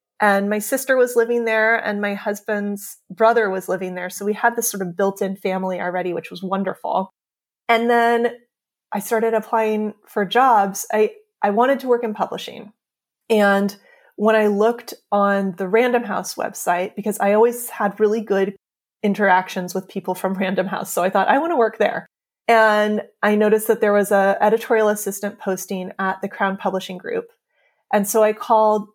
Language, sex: English, female